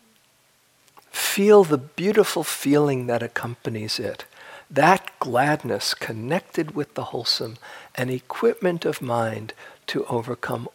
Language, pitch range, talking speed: English, 125-175 Hz, 105 wpm